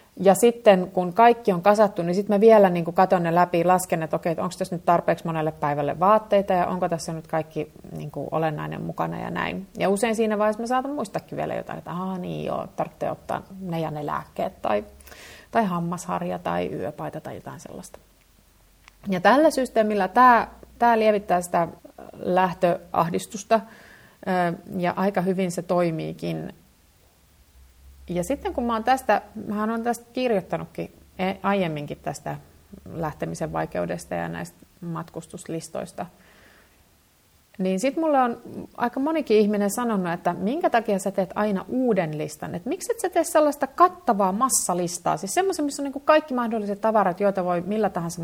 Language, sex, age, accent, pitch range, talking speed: Finnish, female, 30-49, native, 170-230 Hz, 160 wpm